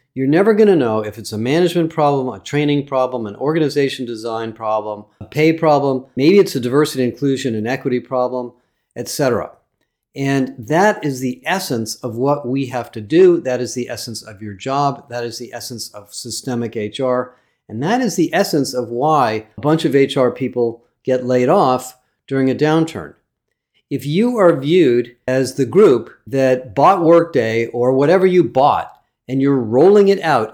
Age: 50-69